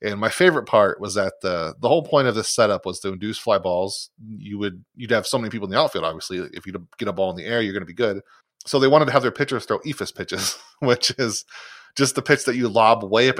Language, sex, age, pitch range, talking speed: English, male, 30-49, 95-125 Hz, 275 wpm